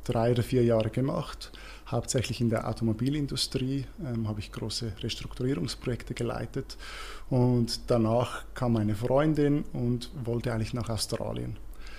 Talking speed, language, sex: 125 wpm, German, male